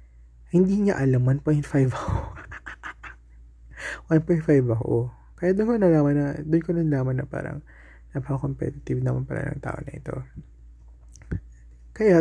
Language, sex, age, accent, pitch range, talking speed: Filipino, male, 20-39, native, 90-150 Hz, 140 wpm